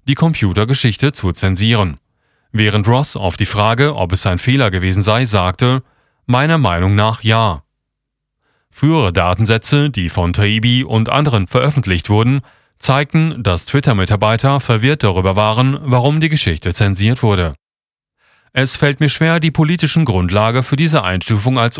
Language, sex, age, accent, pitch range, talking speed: German, male, 30-49, German, 100-140 Hz, 140 wpm